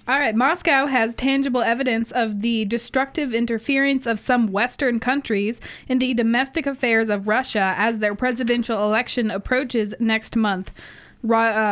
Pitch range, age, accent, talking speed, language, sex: 220-260 Hz, 20-39, American, 140 wpm, English, female